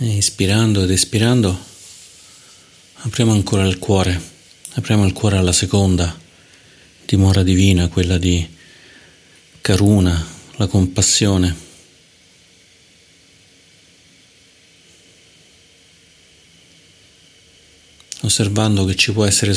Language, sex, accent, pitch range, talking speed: Italian, male, native, 90-100 Hz, 75 wpm